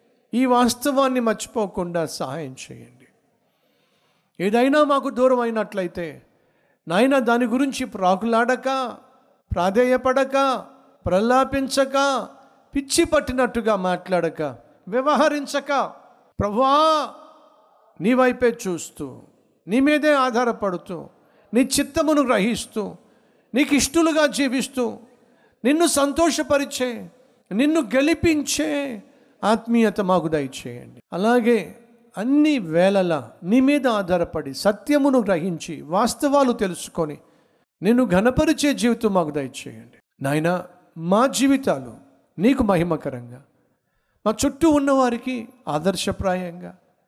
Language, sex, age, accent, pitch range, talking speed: Telugu, male, 50-69, native, 175-265 Hz, 80 wpm